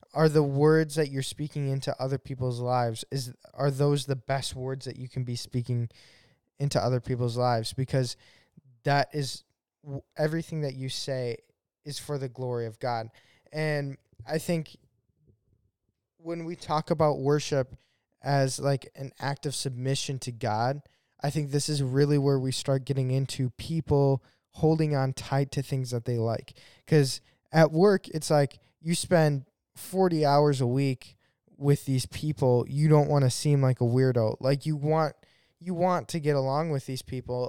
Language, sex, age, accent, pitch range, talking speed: English, male, 10-29, American, 130-155 Hz, 170 wpm